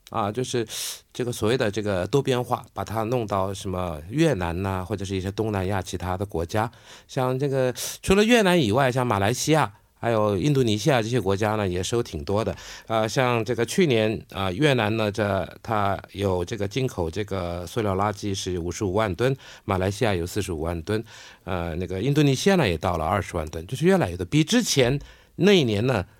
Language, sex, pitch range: Korean, male, 100-150 Hz